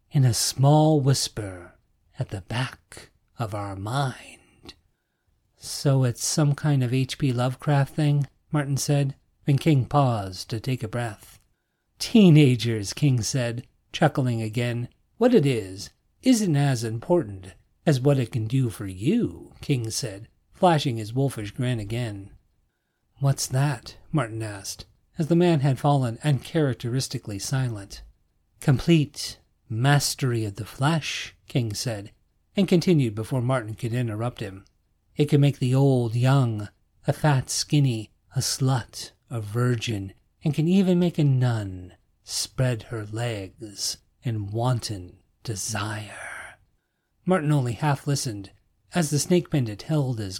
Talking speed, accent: 135 wpm, American